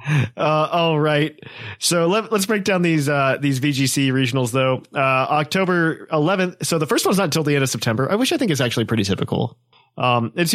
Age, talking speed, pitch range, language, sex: 30-49, 210 wpm, 125-160 Hz, English, male